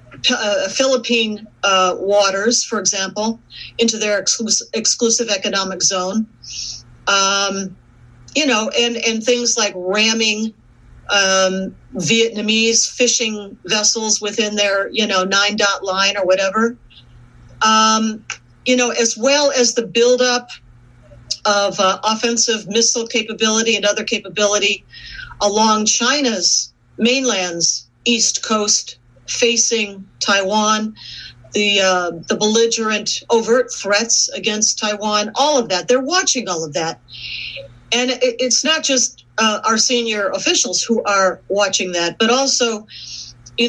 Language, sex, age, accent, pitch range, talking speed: English, female, 50-69, American, 190-230 Hz, 120 wpm